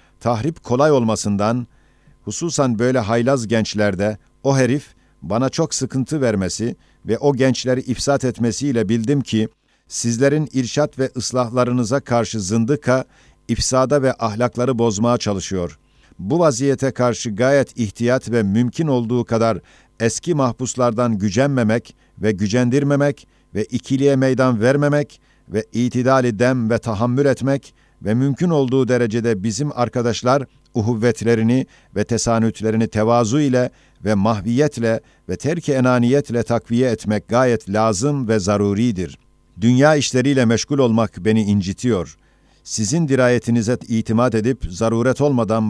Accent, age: native, 50-69